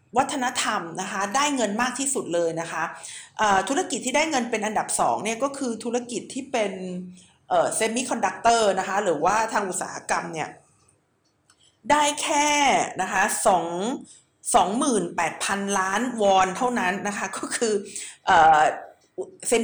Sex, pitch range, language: female, 200-260 Hz, Thai